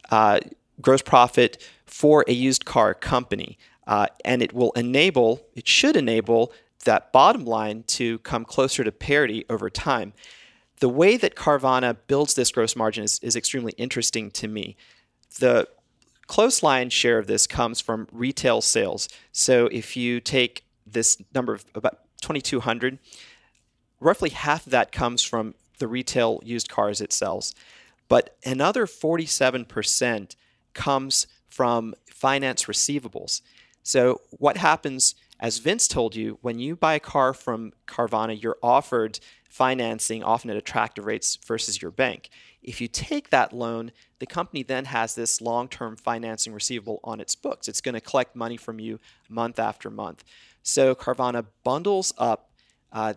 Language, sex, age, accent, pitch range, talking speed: English, male, 40-59, American, 115-130 Hz, 150 wpm